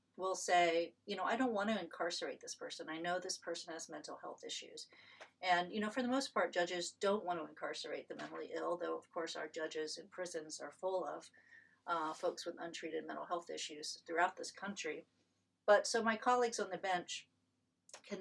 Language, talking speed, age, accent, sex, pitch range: English, 205 wpm, 40-59, American, female, 165-195 Hz